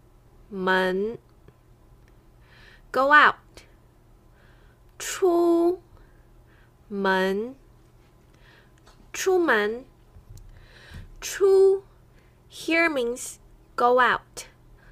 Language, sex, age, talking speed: English, female, 20-39, 40 wpm